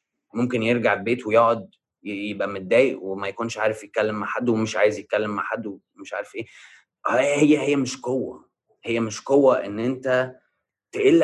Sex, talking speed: male, 160 wpm